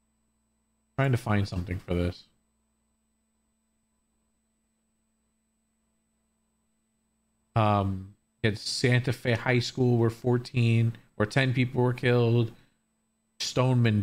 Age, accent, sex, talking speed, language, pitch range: 40-59, American, male, 85 wpm, English, 110-130 Hz